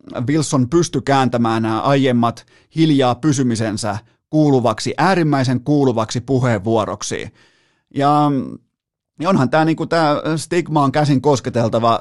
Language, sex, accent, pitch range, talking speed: Finnish, male, native, 115-140 Hz, 110 wpm